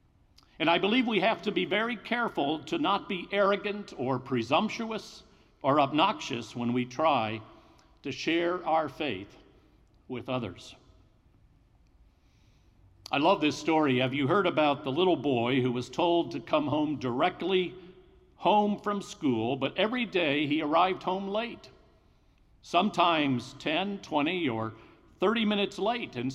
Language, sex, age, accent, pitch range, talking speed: English, male, 50-69, American, 135-210 Hz, 140 wpm